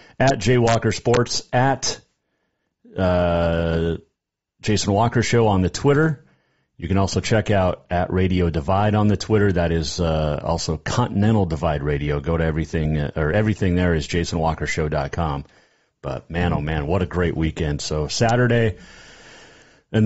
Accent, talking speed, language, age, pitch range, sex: American, 150 wpm, English, 40-59, 85-110 Hz, male